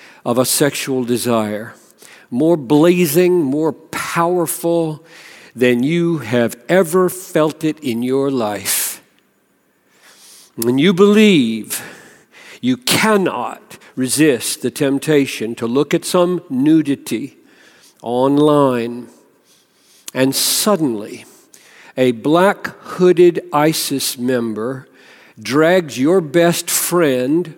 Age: 50-69